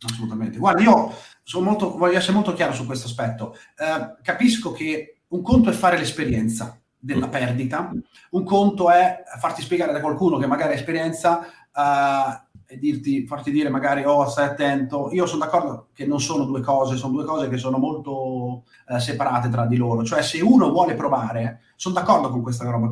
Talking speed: 185 wpm